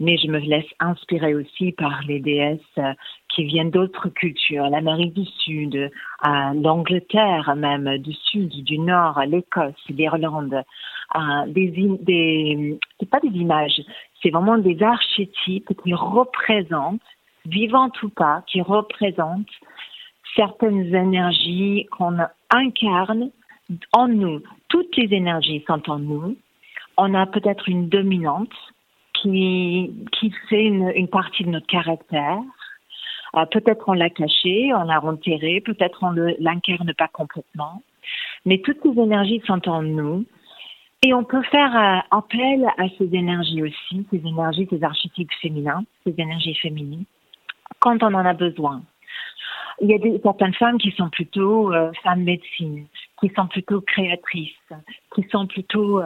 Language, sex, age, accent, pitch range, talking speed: French, female, 40-59, French, 160-210 Hz, 140 wpm